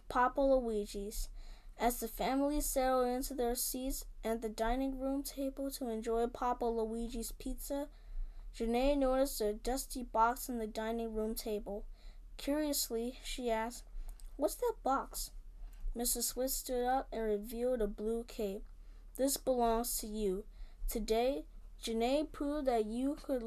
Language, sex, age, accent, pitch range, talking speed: English, female, 20-39, American, 225-275 Hz, 140 wpm